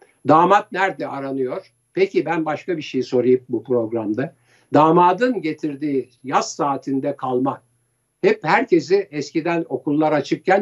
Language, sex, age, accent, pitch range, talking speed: Turkish, male, 60-79, native, 125-155 Hz, 120 wpm